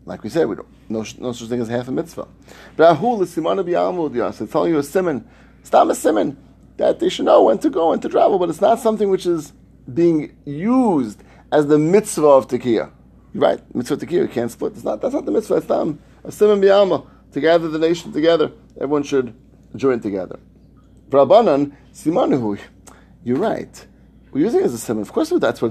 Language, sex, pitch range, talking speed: English, male, 120-170 Hz, 210 wpm